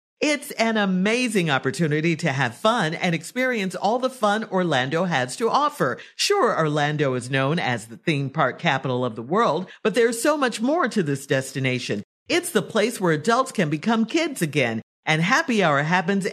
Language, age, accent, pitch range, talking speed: English, 50-69, American, 155-235 Hz, 180 wpm